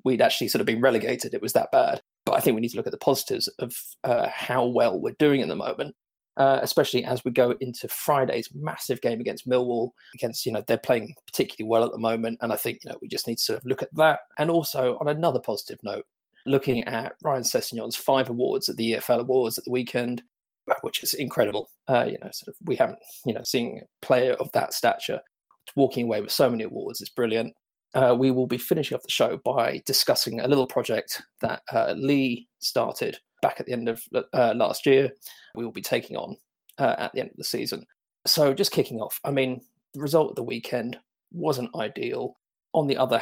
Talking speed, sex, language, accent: 225 wpm, male, English, British